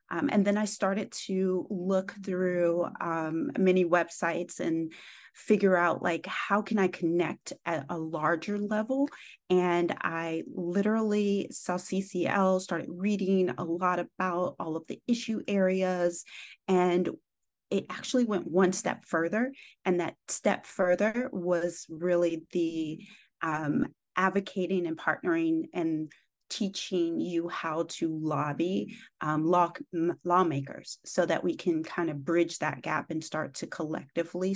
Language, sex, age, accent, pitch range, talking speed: English, female, 30-49, American, 170-195 Hz, 135 wpm